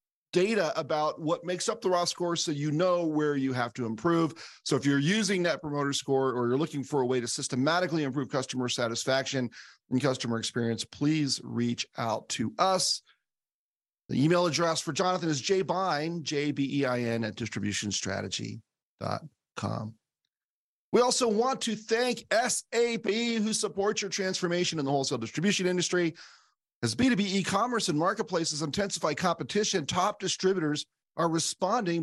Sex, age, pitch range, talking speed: male, 40-59, 130-185 Hz, 145 wpm